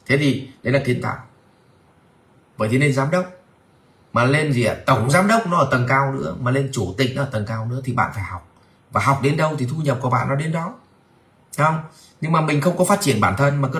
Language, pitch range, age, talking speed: Vietnamese, 115-155 Hz, 30-49, 270 wpm